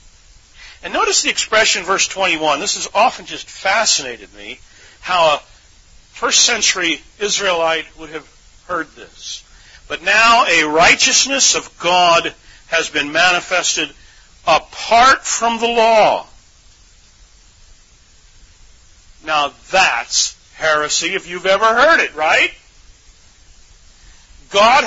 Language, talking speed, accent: English, 105 wpm, American